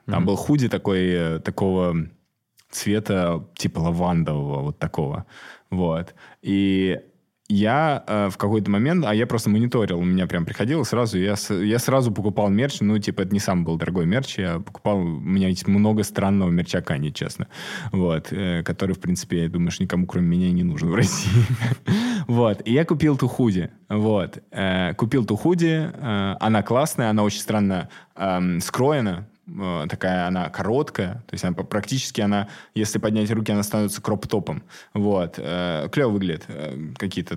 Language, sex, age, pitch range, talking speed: Russian, male, 20-39, 95-120 Hz, 155 wpm